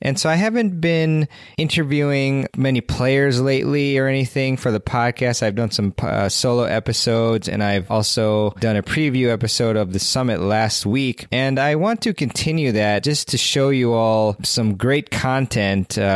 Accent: American